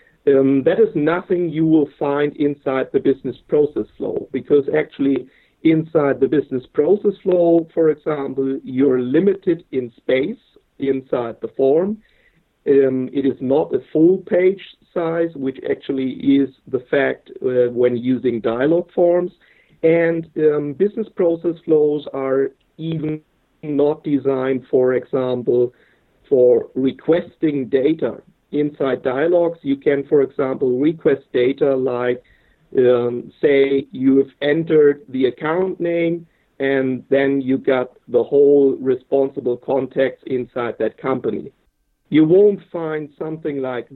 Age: 50-69